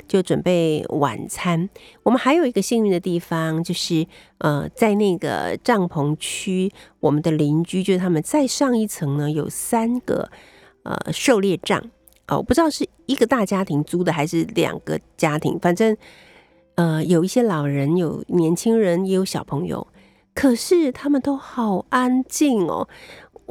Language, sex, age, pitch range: Chinese, female, 50-69, 170-240 Hz